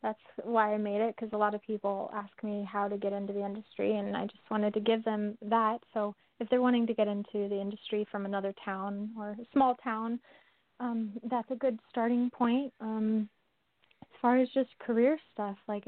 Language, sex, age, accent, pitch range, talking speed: English, female, 20-39, American, 200-235 Hz, 210 wpm